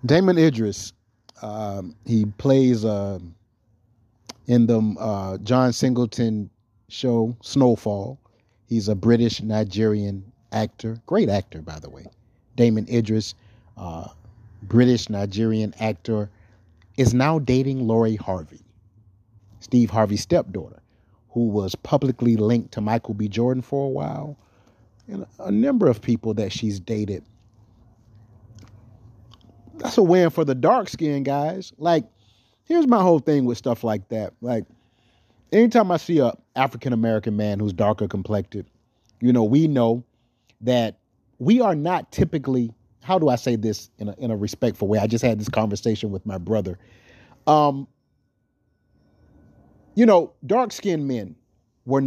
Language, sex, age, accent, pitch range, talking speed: English, male, 30-49, American, 105-125 Hz, 135 wpm